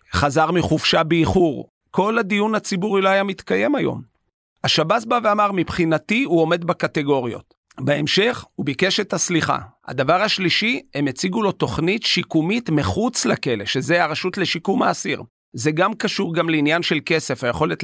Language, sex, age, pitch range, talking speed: Hebrew, male, 40-59, 130-165 Hz, 145 wpm